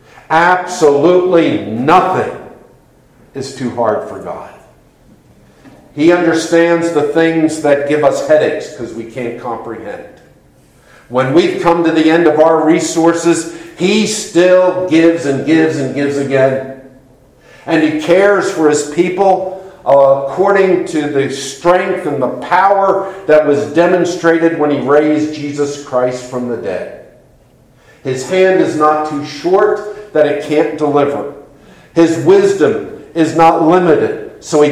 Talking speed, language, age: 135 wpm, English, 50-69